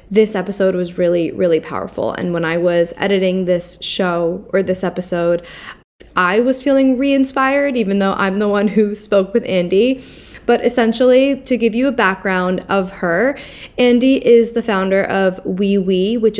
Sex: female